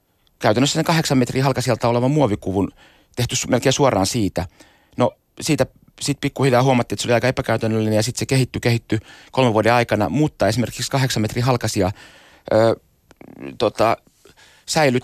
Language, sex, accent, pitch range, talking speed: Finnish, male, native, 105-135 Hz, 145 wpm